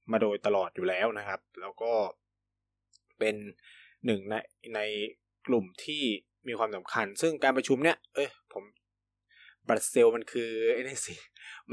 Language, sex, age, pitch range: Thai, male, 20-39, 110-150 Hz